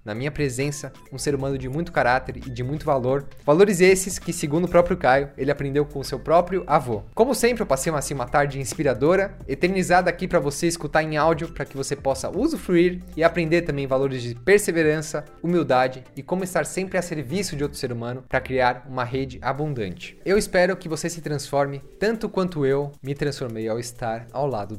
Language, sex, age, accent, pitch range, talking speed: Portuguese, male, 20-39, Brazilian, 135-180 Hz, 205 wpm